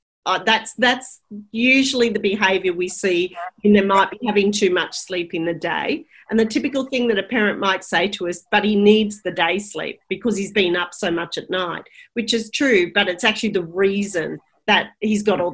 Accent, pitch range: Australian, 180-225 Hz